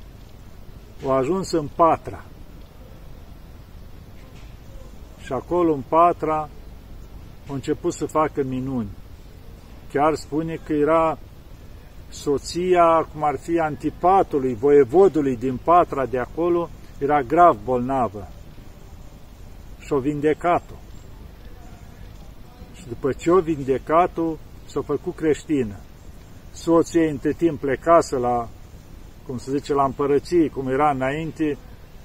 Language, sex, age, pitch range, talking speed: Romanian, male, 50-69, 110-160 Hz, 100 wpm